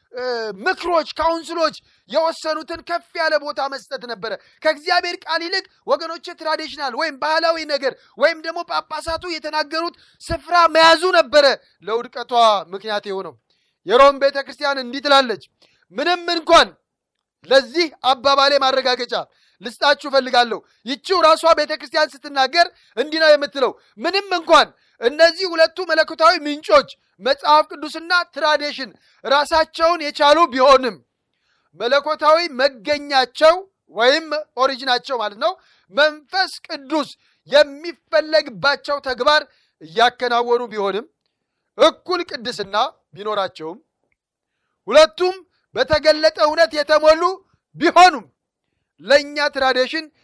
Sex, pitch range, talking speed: male, 275-330 Hz, 85 wpm